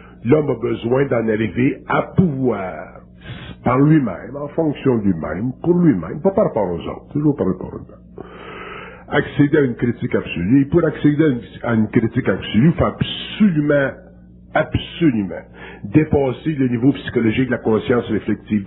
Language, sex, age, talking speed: French, male, 60-79, 160 wpm